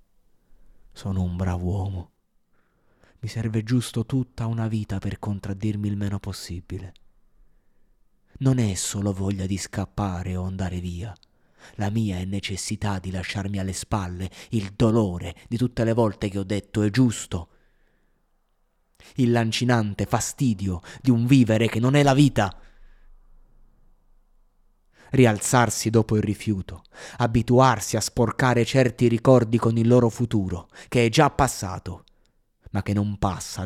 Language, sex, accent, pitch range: Italian, male, native, 95-115 Hz